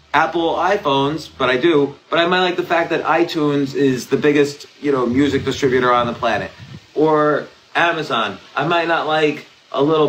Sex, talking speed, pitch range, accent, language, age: male, 185 wpm, 130-175 Hz, American, English, 30-49